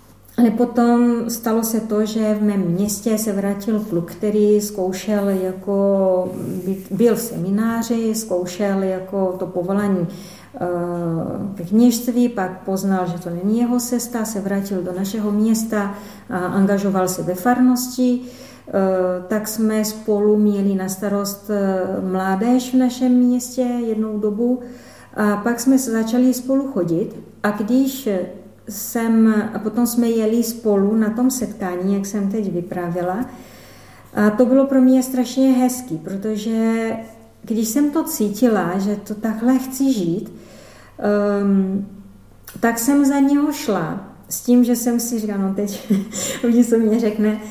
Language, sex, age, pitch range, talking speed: Czech, female, 40-59, 190-235 Hz, 140 wpm